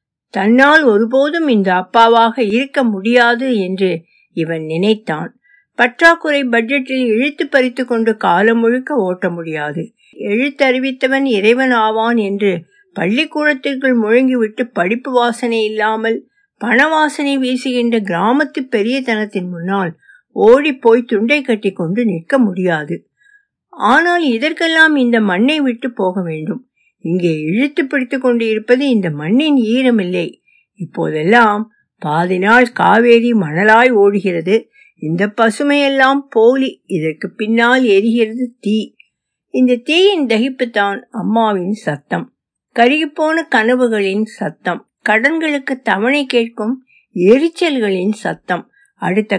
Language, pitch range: Tamil, 205-270 Hz